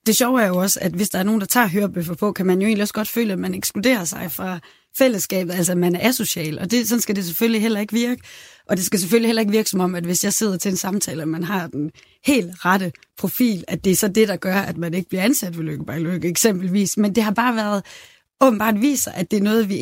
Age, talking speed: 30-49, 280 wpm